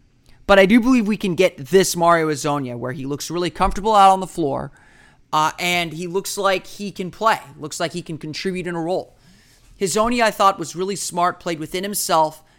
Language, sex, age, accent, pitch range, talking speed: English, male, 30-49, American, 145-190 Hz, 210 wpm